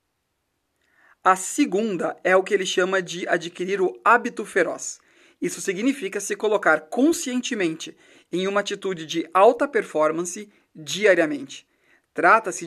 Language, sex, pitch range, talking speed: Portuguese, male, 170-225 Hz, 120 wpm